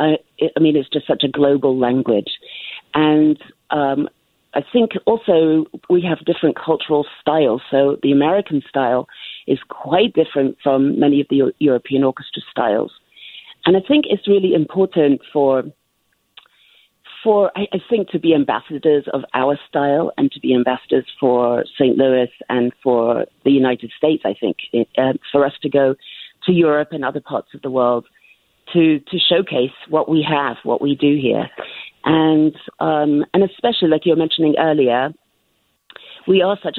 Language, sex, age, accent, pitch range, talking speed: English, female, 40-59, British, 135-160 Hz, 160 wpm